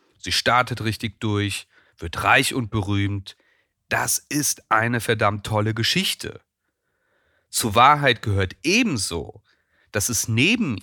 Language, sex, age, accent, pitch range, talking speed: German, male, 40-59, German, 95-120 Hz, 115 wpm